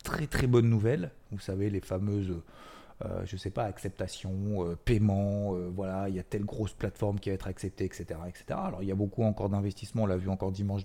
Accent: French